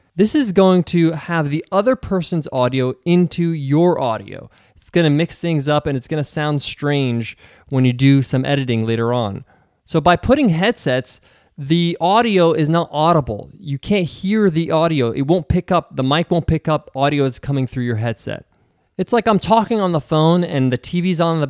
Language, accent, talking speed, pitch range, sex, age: English, American, 205 wpm, 130-170 Hz, male, 20-39